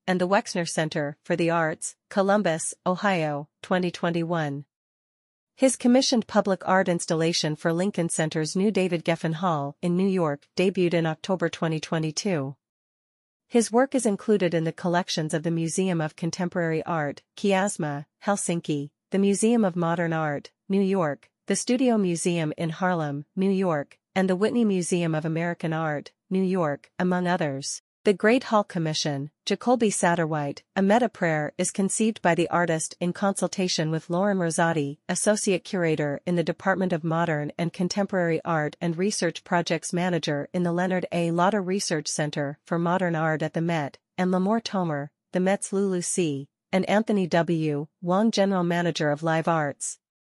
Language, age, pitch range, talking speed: English, 40-59, 160-195 Hz, 155 wpm